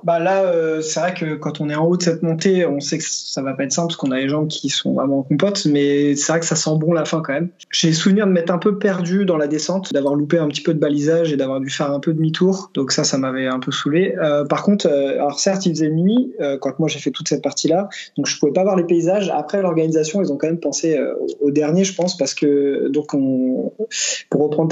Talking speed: 280 wpm